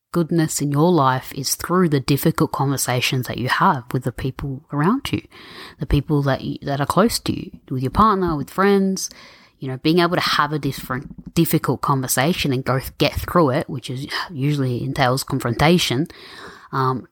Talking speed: 185 wpm